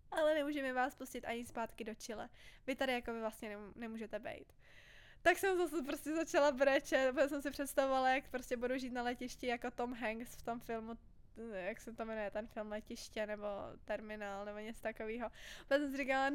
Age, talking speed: 20-39, 200 wpm